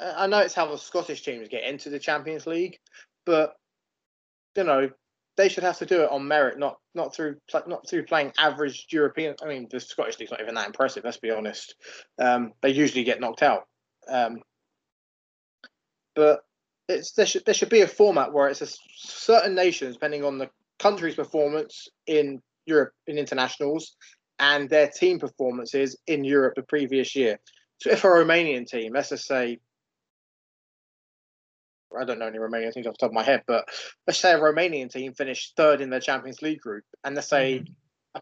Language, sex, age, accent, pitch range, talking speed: English, male, 20-39, British, 135-170 Hz, 185 wpm